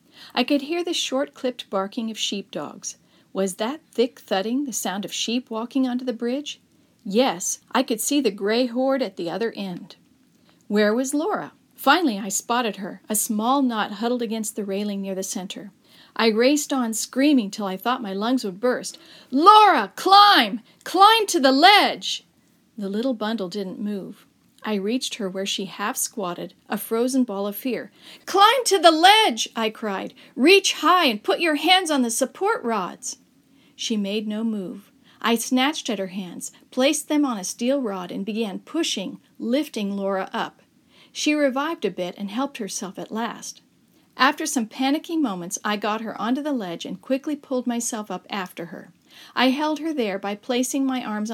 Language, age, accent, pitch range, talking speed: English, 40-59, American, 205-270 Hz, 180 wpm